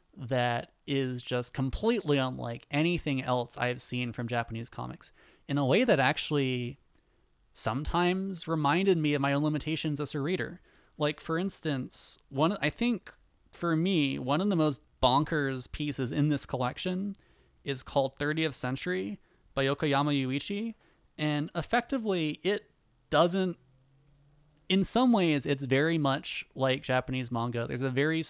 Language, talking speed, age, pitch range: English, 140 wpm, 20-39, 130-160 Hz